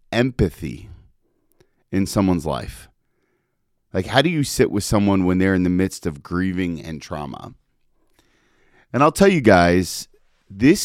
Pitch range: 85-115 Hz